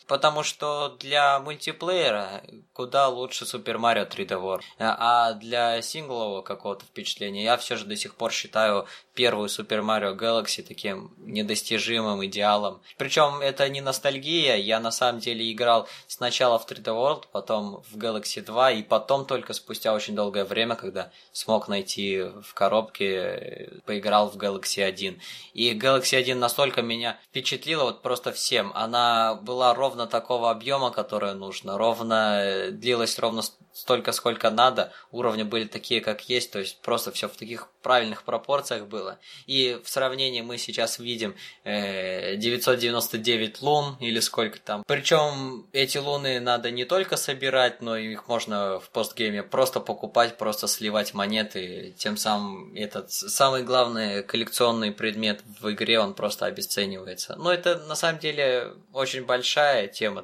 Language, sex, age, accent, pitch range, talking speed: Russian, male, 20-39, native, 105-130 Hz, 145 wpm